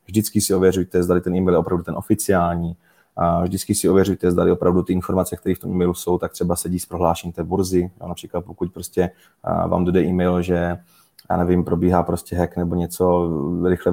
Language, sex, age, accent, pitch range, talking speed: Czech, male, 20-39, native, 90-95 Hz, 195 wpm